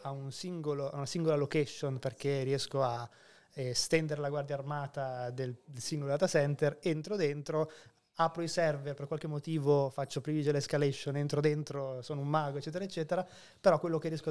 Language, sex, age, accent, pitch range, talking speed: Italian, male, 20-39, native, 140-155 Hz, 175 wpm